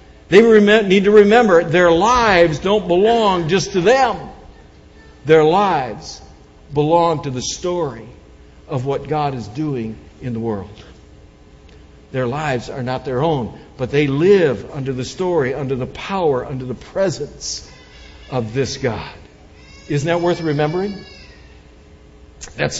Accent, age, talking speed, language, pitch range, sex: American, 60-79, 135 wpm, English, 125-185 Hz, male